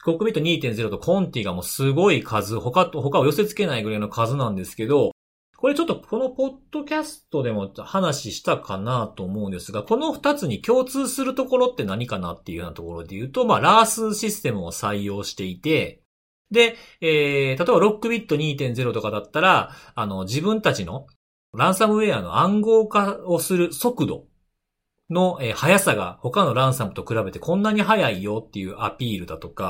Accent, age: native, 40-59